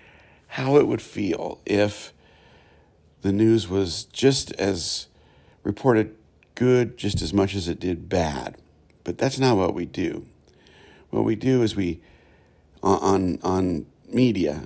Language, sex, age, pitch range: English, male, 50-69, 85-105 Hz